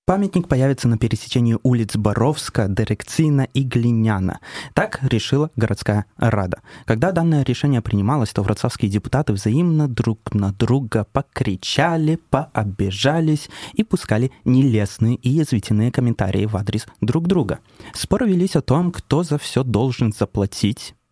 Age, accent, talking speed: 20-39, native, 130 wpm